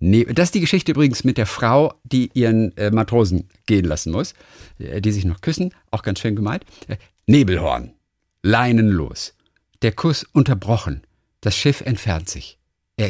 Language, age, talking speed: German, 50-69, 145 wpm